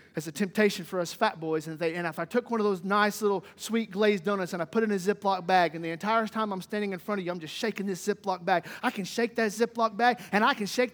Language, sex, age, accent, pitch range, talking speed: English, male, 40-59, American, 220-295 Hz, 295 wpm